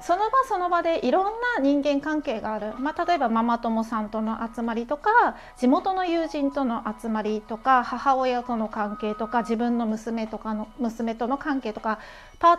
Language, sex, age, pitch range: Japanese, female, 30-49, 225-305 Hz